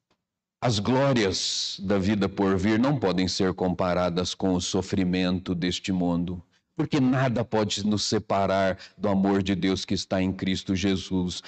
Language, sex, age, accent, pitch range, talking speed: Portuguese, male, 50-69, Brazilian, 100-150 Hz, 150 wpm